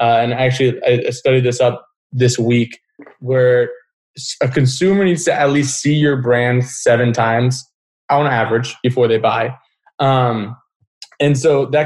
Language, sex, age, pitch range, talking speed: English, male, 20-39, 120-140 Hz, 150 wpm